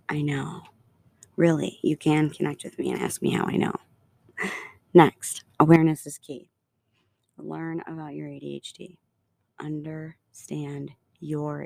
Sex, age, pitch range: female, 30-49, 145-165 Hz